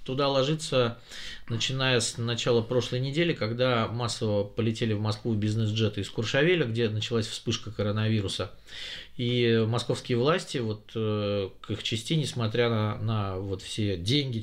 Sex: male